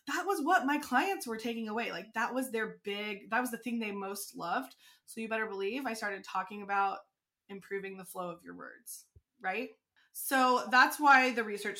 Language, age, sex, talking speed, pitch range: English, 20-39, female, 205 wpm, 200-250 Hz